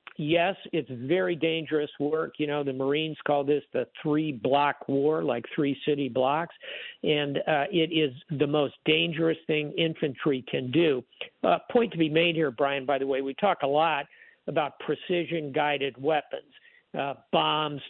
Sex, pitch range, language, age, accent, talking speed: male, 145-170 Hz, English, 50-69, American, 170 wpm